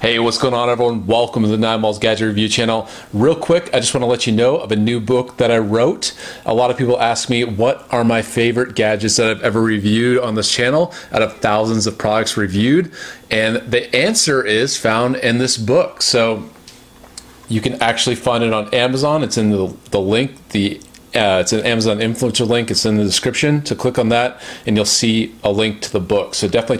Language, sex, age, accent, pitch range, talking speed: English, male, 30-49, American, 110-125 Hz, 220 wpm